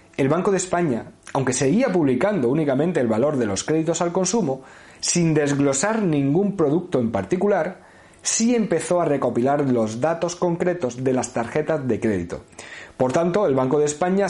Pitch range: 130-180 Hz